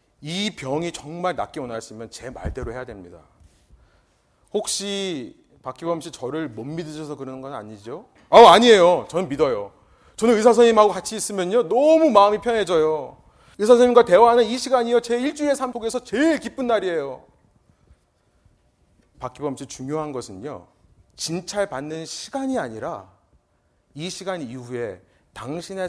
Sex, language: male, Korean